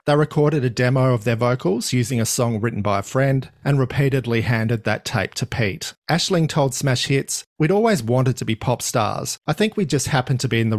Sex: male